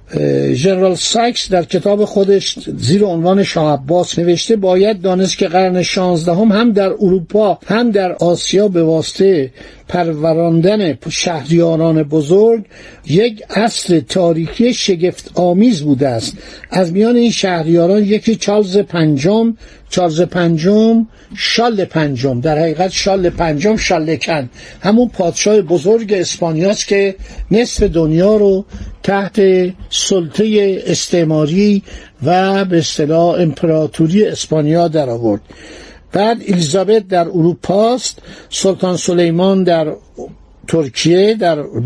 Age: 60-79